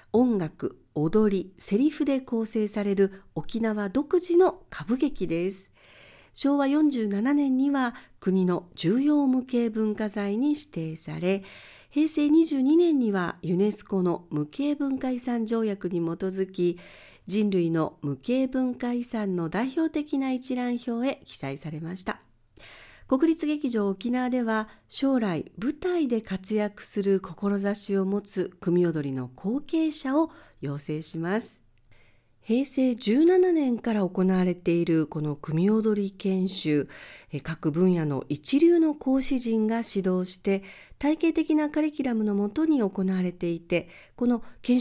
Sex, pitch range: female, 180-265 Hz